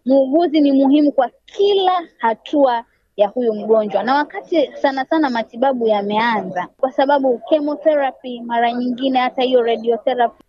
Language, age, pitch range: Swahili, 20-39, 235-285 Hz